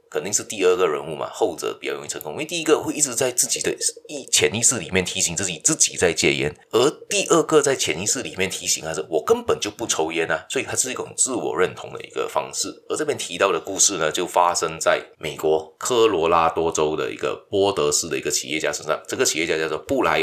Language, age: Chinese, 30-49